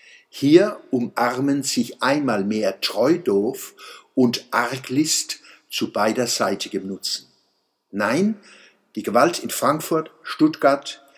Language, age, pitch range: German, 60-79, 120-165 Hz